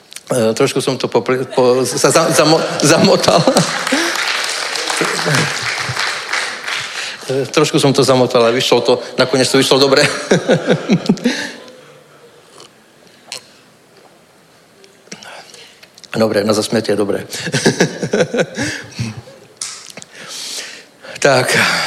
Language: Czech